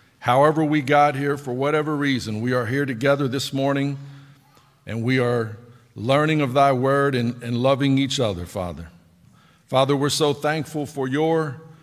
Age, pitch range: 50-69, 120-145 Hz